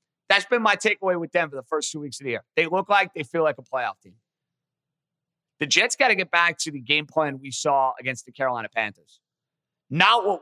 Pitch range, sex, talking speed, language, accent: 150-210 Hz, male, 235 wpm, English, American